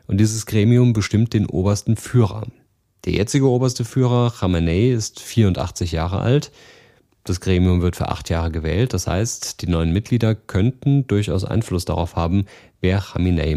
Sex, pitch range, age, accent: male, 90-110 Hz, 40-59, German